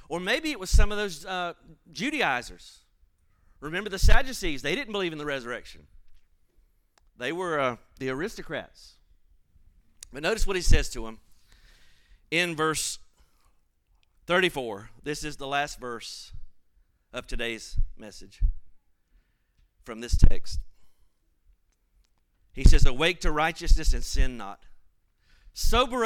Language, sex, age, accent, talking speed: English, male, 40-59, American, 120 wpm